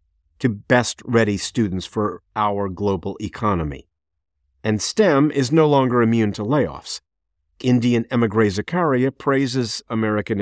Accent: American